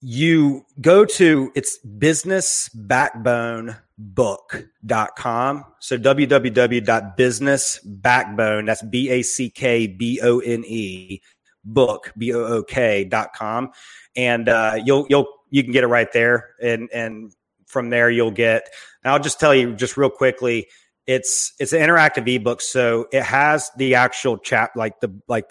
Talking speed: 120 wpm